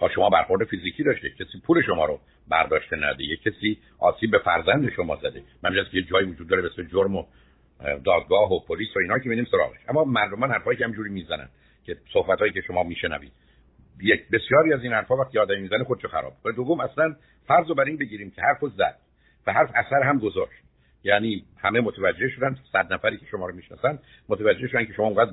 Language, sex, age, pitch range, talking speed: Persian, male, 60-79, 100-140 Hz, 205 wpm